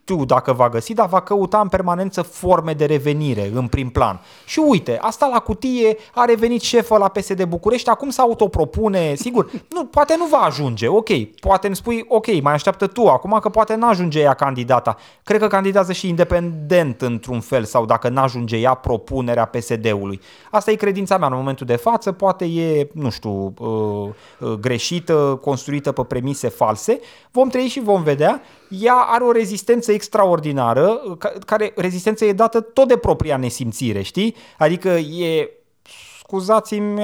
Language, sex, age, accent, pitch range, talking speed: Romanian, male, 30-49, native, 135-220 Hz, 165 wpm